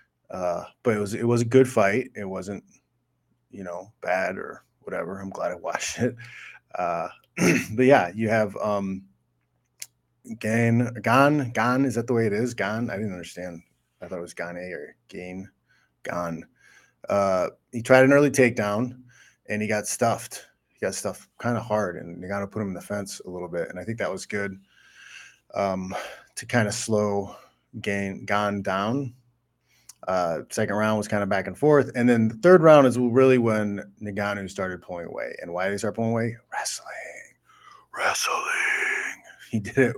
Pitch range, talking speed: 90-120 Hz, 185 wpm